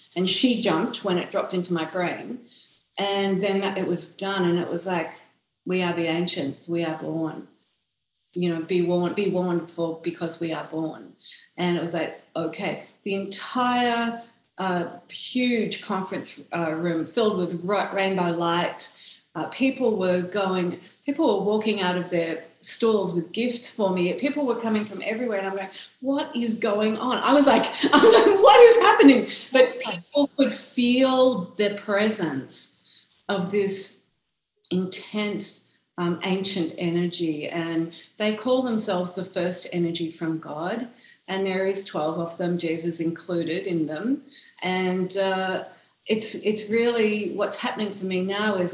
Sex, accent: female, Australian